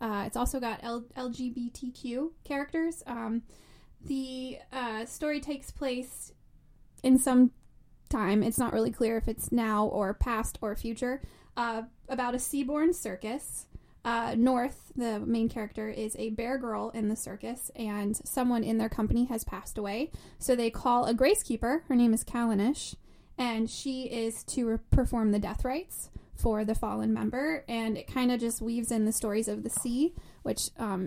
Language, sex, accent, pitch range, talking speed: English, female, American, 220-255 Hz, 170 wpm